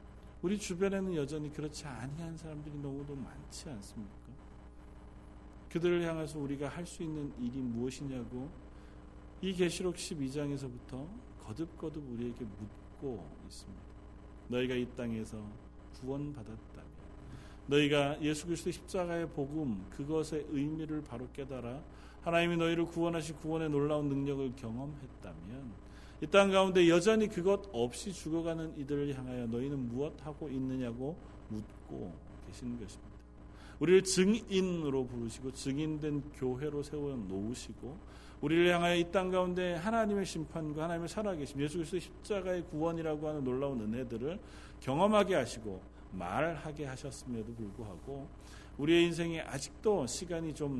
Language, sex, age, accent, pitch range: Korean, male, 40-59, native, 120-165 Hz